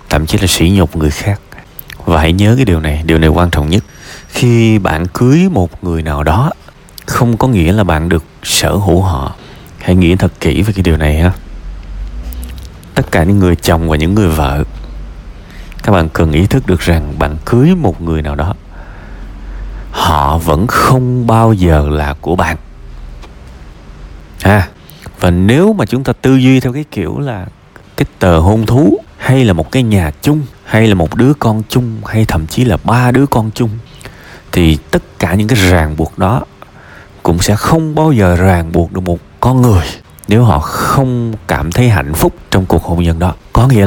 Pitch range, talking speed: 80-115 Hz, 195 wpm